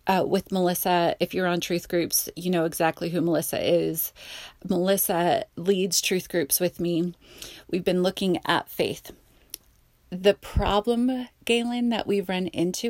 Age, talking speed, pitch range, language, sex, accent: 30-49, 150 wpm, 180-230 Hz, English, female, American